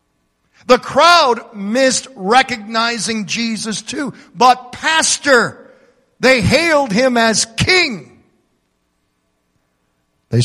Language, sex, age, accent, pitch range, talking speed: English, male, 50-69, American, 190-285 Hz, 80 wpm